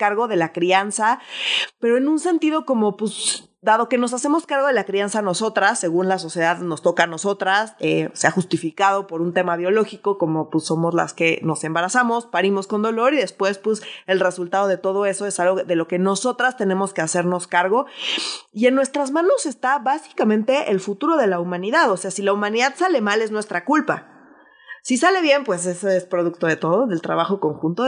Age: 20-39